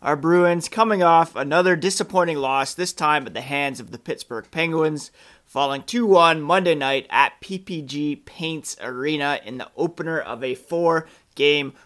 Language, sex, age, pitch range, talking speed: English, male, 30-49, 135-165 Hz, 150 wpm